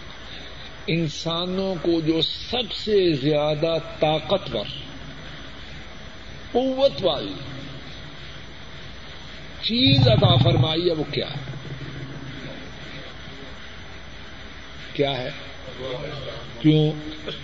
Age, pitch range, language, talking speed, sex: 50-69, 120-155 Hz, Urdu, 65 wpm, male